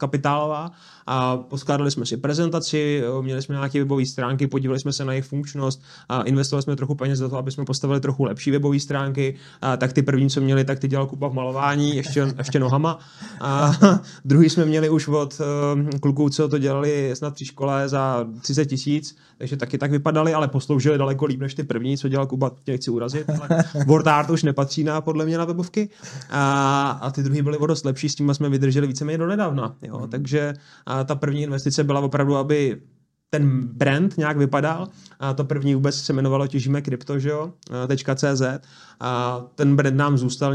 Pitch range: 135-150 Hz